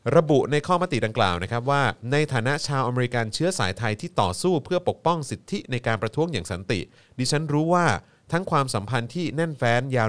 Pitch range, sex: 105-145 Hz, male